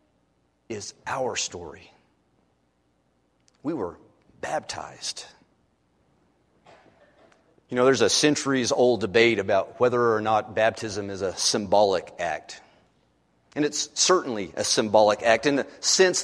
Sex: male